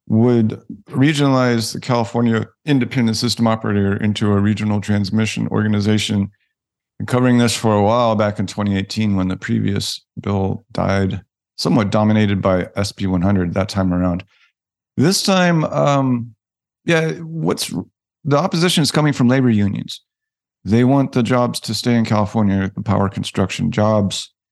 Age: 50-69